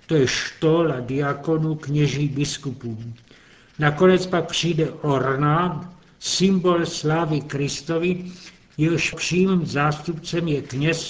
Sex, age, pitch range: male, 60-79, 145-170 Hz